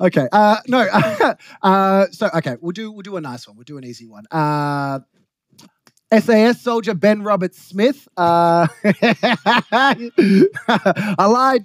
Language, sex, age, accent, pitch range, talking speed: English, male, 20-39, Australian, 145-205 Hz, 145 wpm